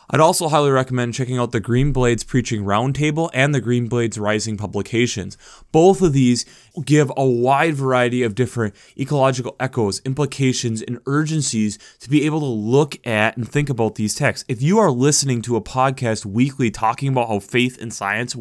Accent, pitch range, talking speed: American, 110-140 Hz, 180 wpm